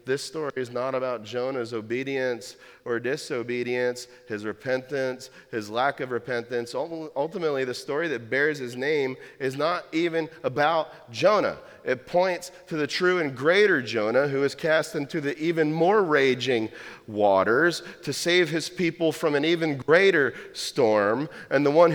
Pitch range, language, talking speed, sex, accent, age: 95-140 Hz, English, 155 wpm, male, American, 40-59